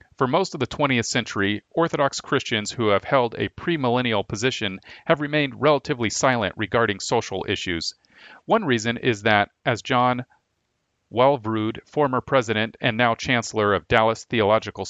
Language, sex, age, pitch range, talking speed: English, male, 40-59, 105-135 Hz, 145 wpm